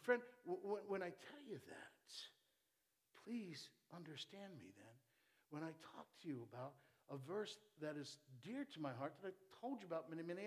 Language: English